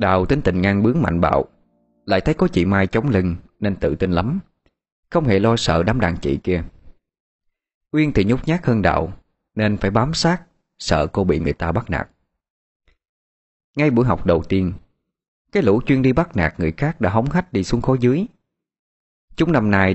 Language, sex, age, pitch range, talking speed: Vietnamese, male, 20-39, 85-120 Hz, 200 wpm